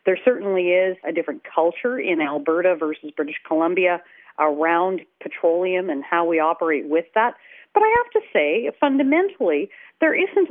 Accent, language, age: American, English, 40-59